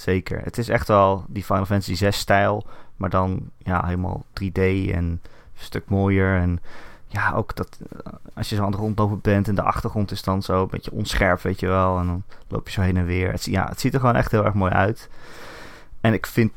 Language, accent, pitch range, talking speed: Dutch, Dutch, 95-110 Hz, 220 wpm